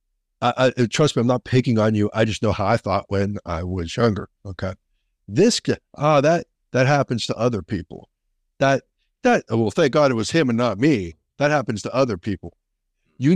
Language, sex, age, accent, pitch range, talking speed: English, male, 50-69, American, 105-140 Hz, 200 wpm